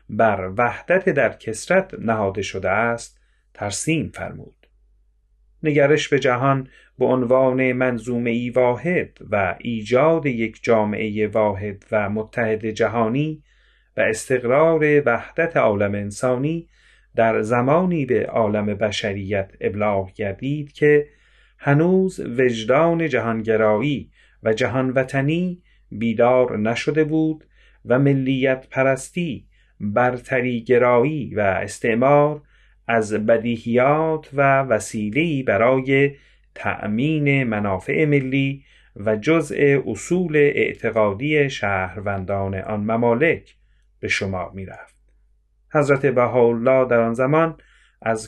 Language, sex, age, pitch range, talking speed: Persian, male, 30-49, 110-145 Hz, 95 wpm